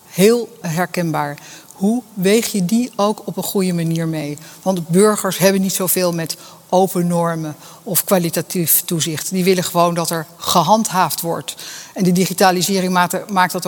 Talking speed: 155 wpm